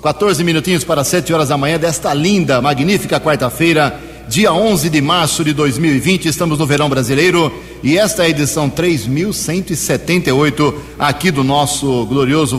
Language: Portuguese